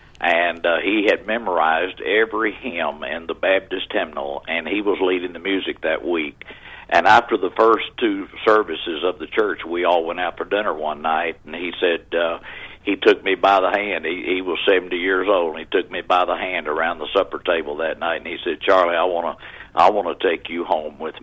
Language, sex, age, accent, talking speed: English, male, 60-79, American, 225 wpm